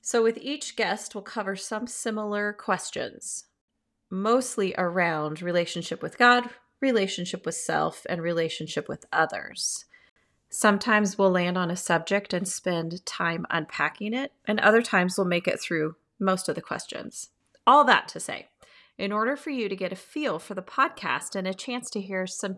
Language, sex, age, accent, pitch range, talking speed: English, female, 30-49, American, 180-230 Hz, 170 wpm